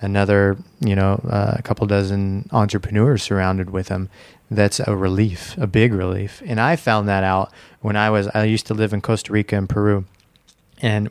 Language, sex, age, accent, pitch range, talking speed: English, male, 20-39, American, 100-110 Hz, 190 wpm